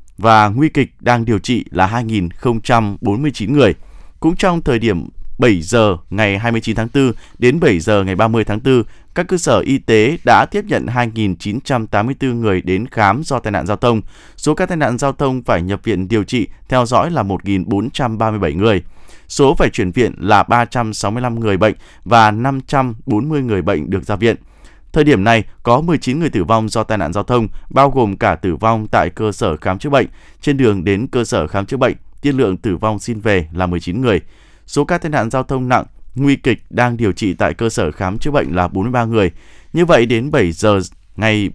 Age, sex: 20-39, male